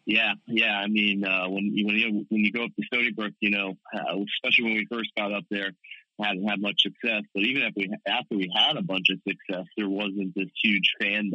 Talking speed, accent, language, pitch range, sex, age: 240 wpm, American, English, 95-110 Hz, male, 30-49